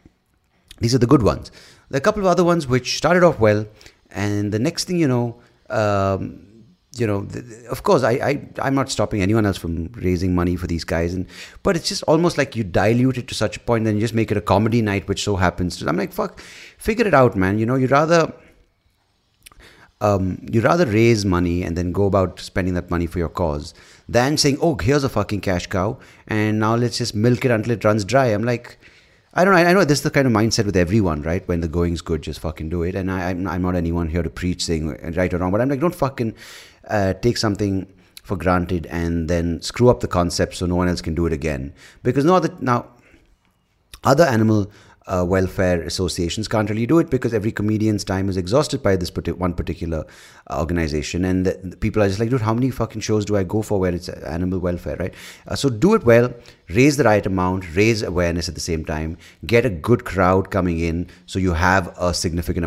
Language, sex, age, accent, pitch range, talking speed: English, male, 30-49, Indian, 90-120 Hz, 235 wpm